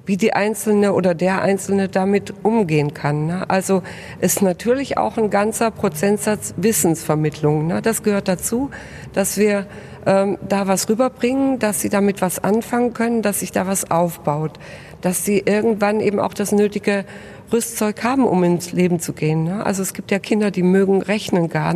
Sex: female